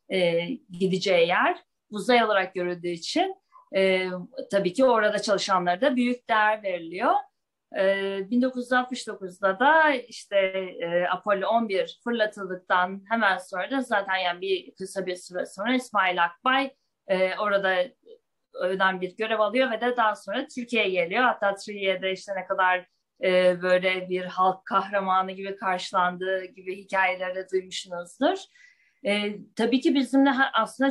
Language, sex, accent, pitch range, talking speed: Turkish, female, native, 180-230 Hz, 120 wpm